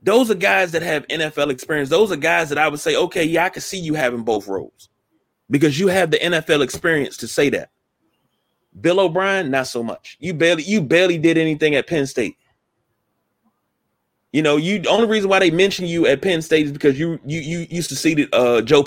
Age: 30-49